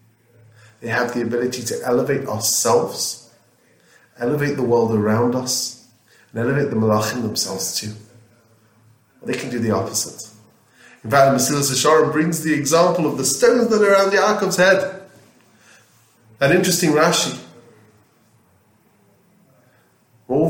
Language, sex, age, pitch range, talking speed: English, male, 30-49, 115-140 Hz, 125 wpm